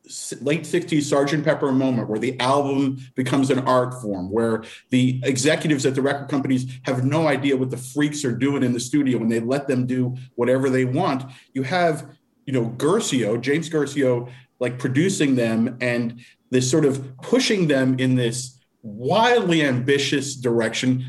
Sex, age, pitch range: male, 40-59, 125-160 Hz